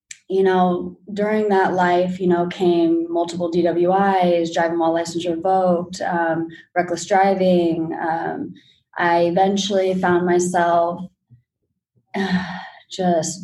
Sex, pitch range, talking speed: female, 170-195 Hz, 105 wpm